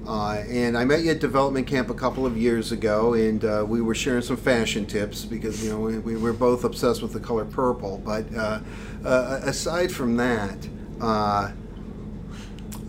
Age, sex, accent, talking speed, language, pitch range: 50-69, male, American, 185 wpm, English, 110-135 Hz